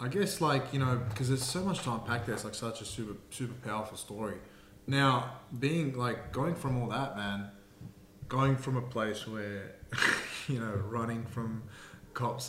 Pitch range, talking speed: 105-125 Hz, 180 wpm